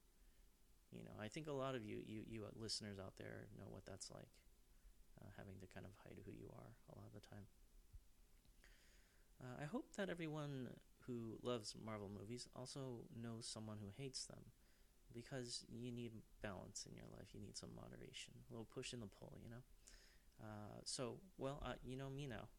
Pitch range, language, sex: 100-120 Hz, English, male